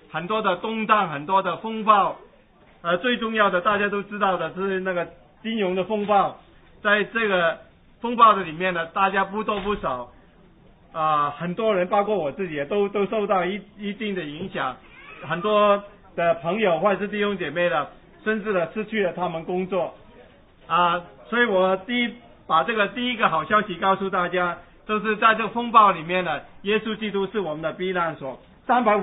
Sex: male